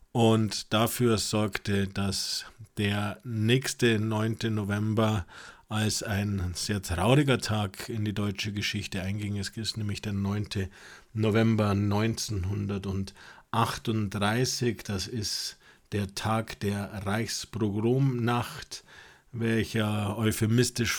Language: German